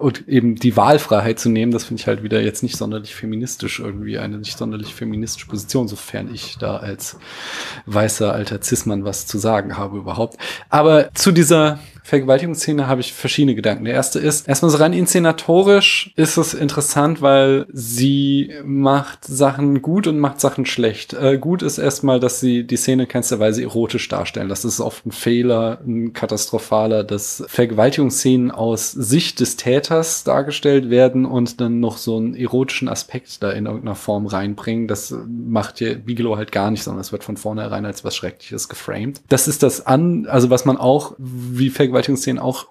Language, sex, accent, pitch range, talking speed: German, male, German, 115-140 Hz, 175 wpm